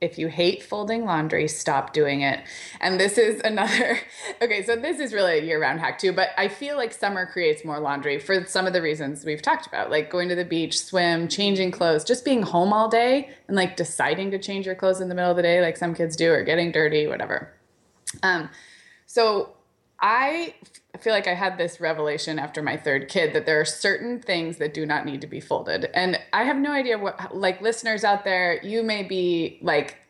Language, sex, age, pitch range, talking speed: English, female, 20-39, 160-210 Hz, 220 wpm